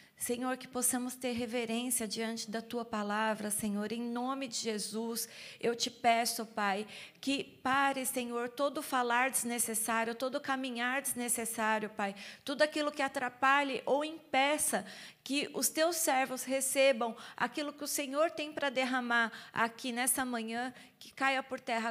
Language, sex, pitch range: Portuguese, female, 215-255 Hz